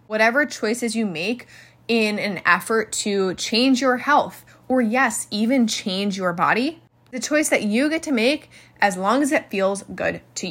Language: English